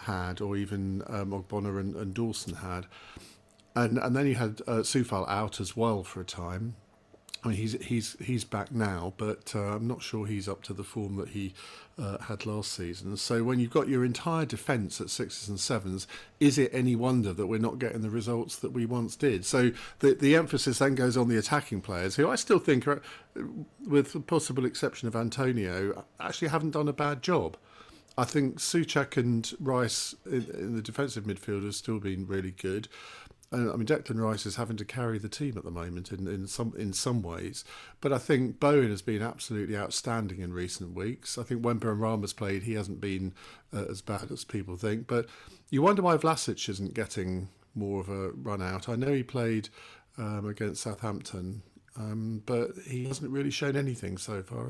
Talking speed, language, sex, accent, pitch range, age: 205 wpm, English, male, British, 100-125 Hz, 50-69